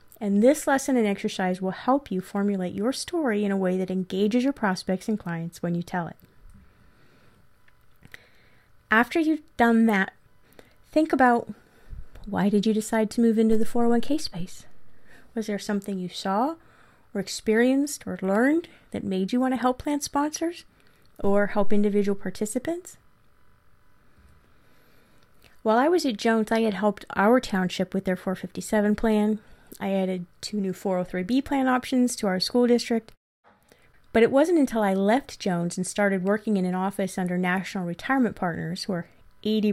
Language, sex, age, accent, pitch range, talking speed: English, female, 30-49, American, 185-235 Hz, 155 wpm